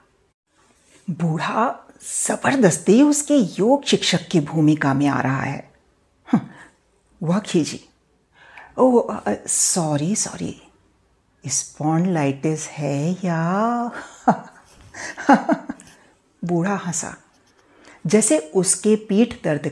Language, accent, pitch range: Hindi, native, 155-235 Hz